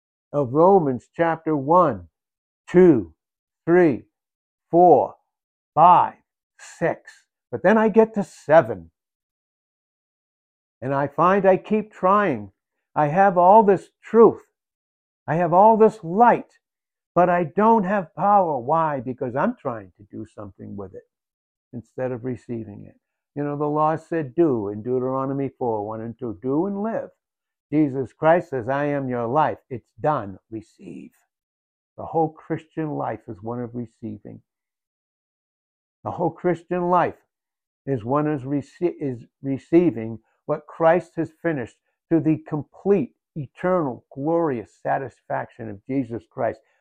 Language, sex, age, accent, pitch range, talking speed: English, male, 60-79, American, 120-170 Hz, 130 wpm